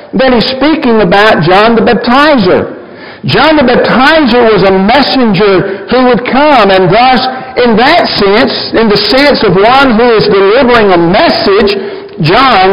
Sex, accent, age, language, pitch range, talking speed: male, American, 60-79, English, 185-250 Hz, 150 wpm